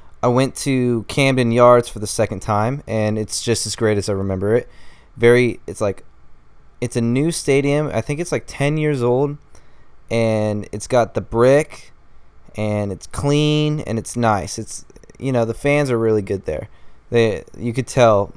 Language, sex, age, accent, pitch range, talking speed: English, male, 20-39, American, 105-125 Hz, 185 wpm